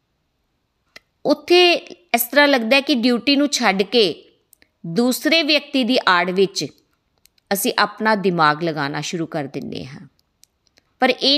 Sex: female